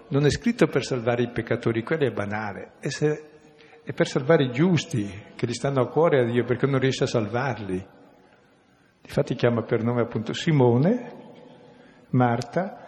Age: 60-79